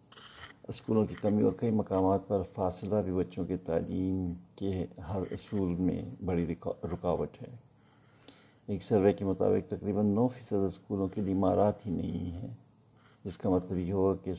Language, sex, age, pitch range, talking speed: Urdu, male, 50-69, 90-110 Hz, 160 wpm